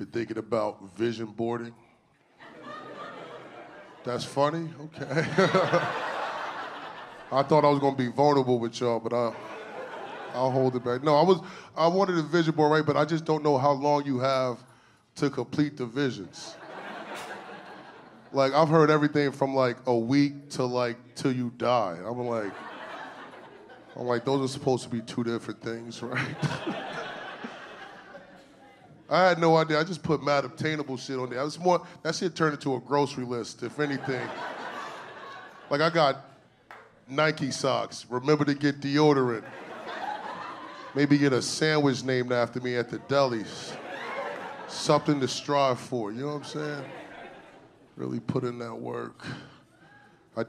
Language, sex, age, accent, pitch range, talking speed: English, male, 20-39, American, 120-150 Hz, 155 wpm